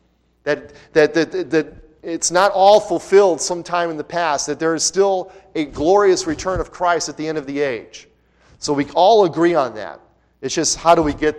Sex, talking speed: male, 205 wpm